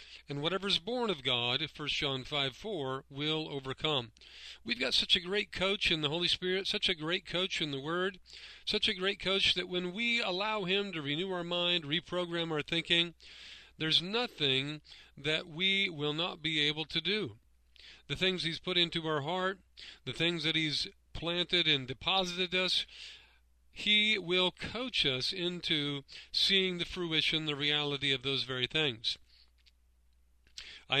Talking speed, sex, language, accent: 165 wpm, male, English, American